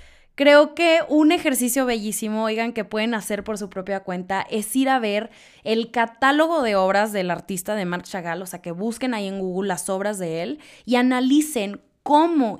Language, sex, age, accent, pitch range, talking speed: Spanish, female, 20-39, Mexican, 200-260 Hz, 190 wpm